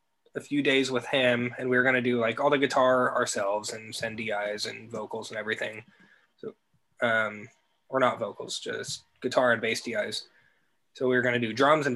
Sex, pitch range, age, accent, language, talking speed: male, 115-130 Hz, 20-39, American, English, 210 wpm